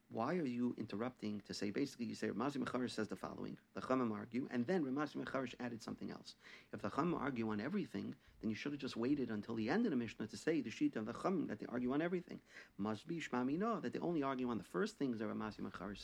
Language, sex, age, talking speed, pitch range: English, male, 50-69, 250 wpm, 105-125 Hz